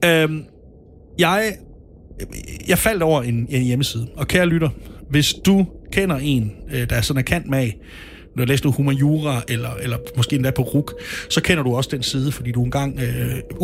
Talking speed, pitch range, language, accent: 185 wpm, 120-175 Hz, Danish, native